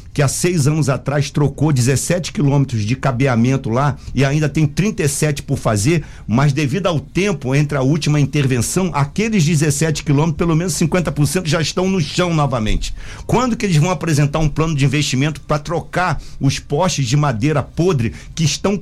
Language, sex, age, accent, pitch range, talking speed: Portuguese, male, 50-69, Brazilian, 130-170 Hz, 170 wpm